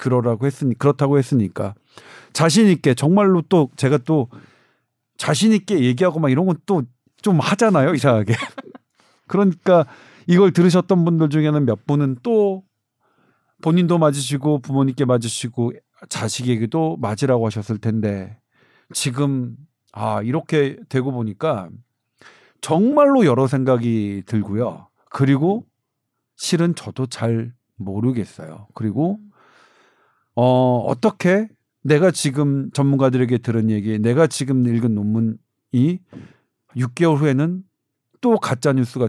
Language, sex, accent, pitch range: Korean, male, native, 120-165 Hz